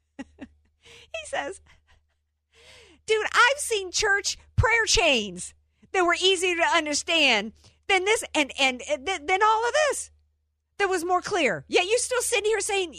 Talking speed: 155 wpm